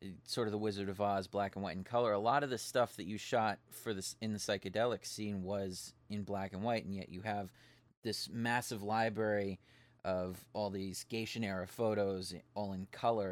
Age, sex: 30-49, male